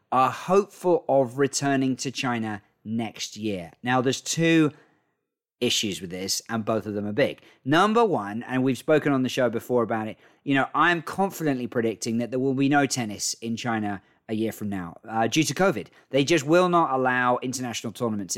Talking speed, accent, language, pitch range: 195 wpm, British, English, 115-145 Hz